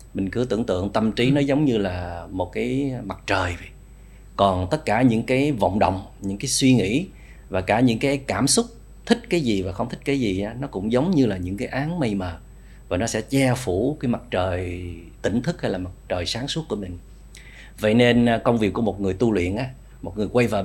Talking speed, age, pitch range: 240 wpm, 30-49, 95-125 Hz